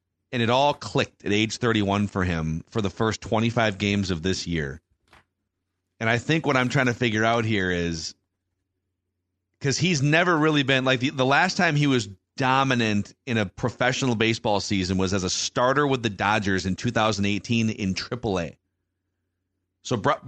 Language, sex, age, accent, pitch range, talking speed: English, male, 30-49, American, 95-125 Hz, 170 wpm